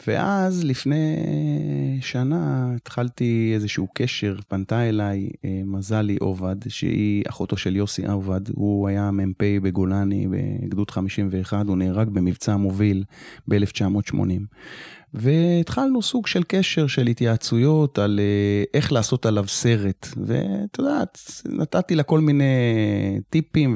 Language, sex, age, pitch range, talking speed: Hebrew, male, 30-49, 100-145 Hz, 110 wpm